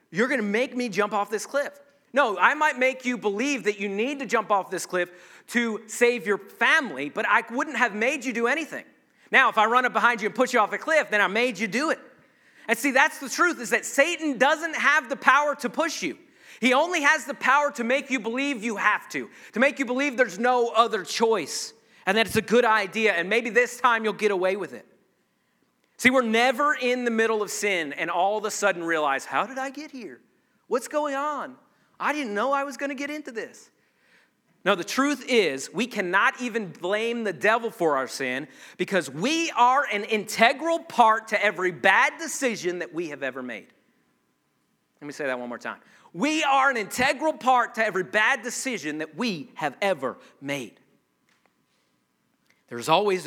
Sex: male